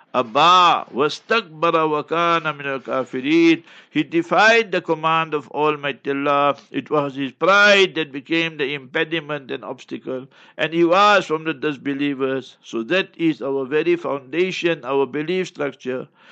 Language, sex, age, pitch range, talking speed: English, male, 60-79, 150-185 Hz, 130 wpm